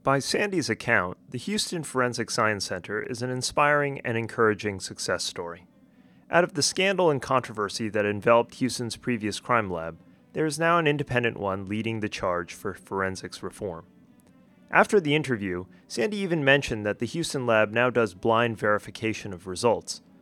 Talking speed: 165 wpm